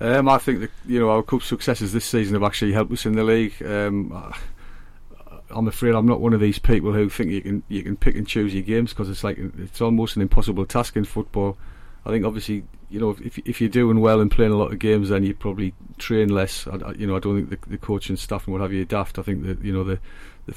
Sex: male